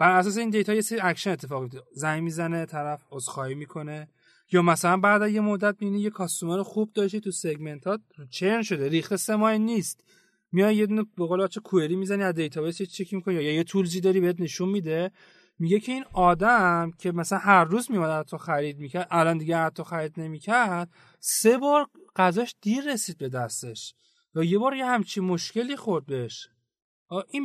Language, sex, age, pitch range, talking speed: Persian, male, 30-49, 155-205 Hz, 175 wpm